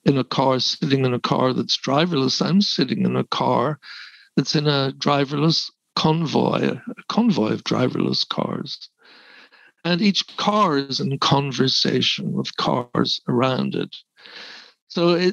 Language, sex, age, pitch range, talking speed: English, male, 60-79, 130-170 Hz, 135 wpm